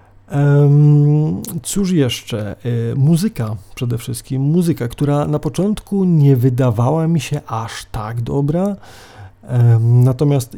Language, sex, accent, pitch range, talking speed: Polish, male, native, 120-150 Hz, 95 wpm